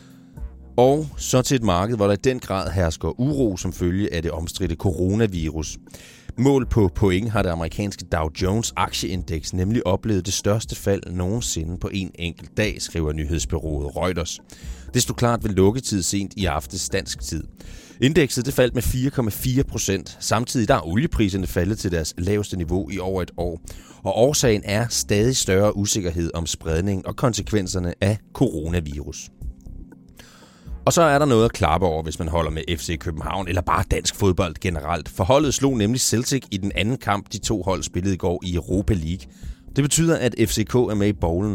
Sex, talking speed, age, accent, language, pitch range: male, 180 wpm, 30-49, native, Danish, 85-110 Hz